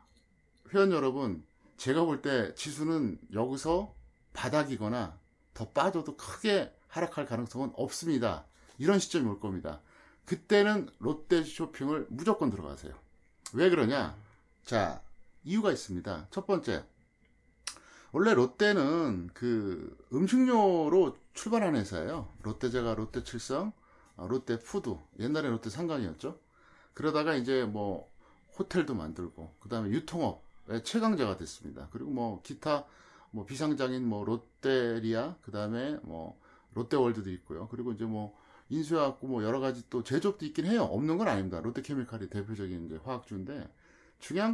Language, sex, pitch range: Korean, male, 105-170 Hz